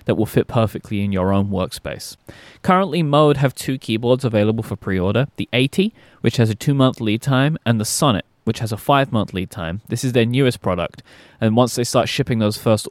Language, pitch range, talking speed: English, 100-130 Hz, 210 wpm